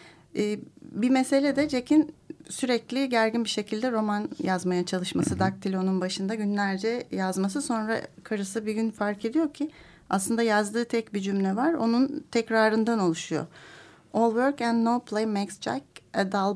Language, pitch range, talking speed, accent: Turkish, 200-240 Hz, 145 wpm, native